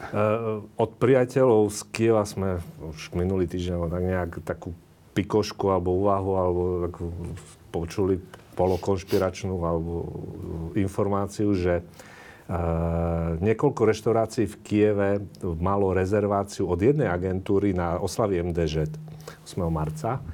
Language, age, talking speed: Slovak, 40-59, 105 wpm